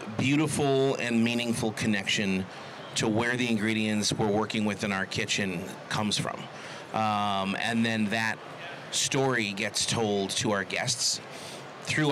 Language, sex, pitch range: English, male, 110-125 Hz